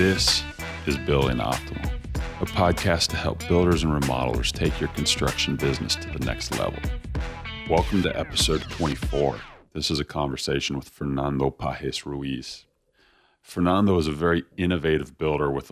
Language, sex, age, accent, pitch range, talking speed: English, male, 40-59, American, 70-85 Hz, 145 wpm